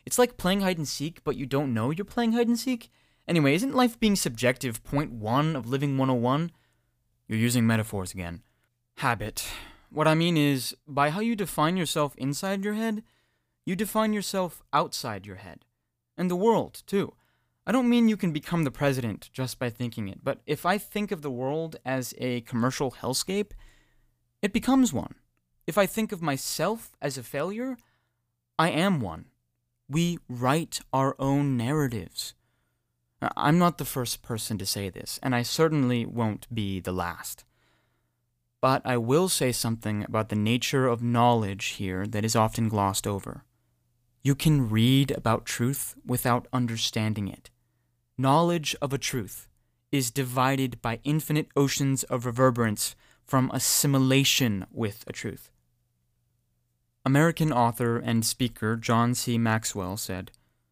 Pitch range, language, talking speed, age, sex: 115-150 Hz, English, 150 wpm, 20-39, male